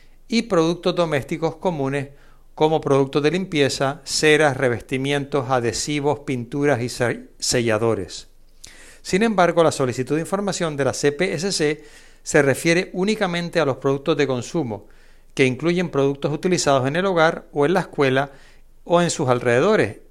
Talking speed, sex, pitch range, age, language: 135 wpm, male, 135-175 Hz, 60-79, Spanish